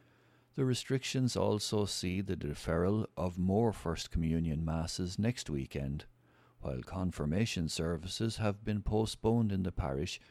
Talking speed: 130 wpm